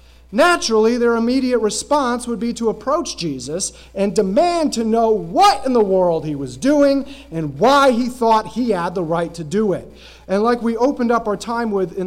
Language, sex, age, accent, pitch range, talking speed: English, male, 30-49, American, 175-240 Hz, 200 wpm